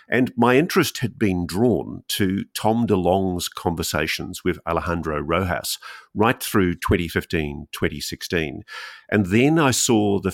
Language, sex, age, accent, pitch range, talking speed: English, male, 50-69, Australian, 80-105 Hz, 130 wpm